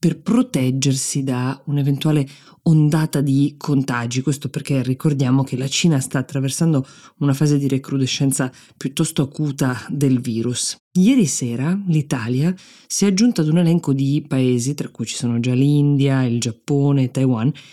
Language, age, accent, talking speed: Italian, 20-39, native, 150 wpm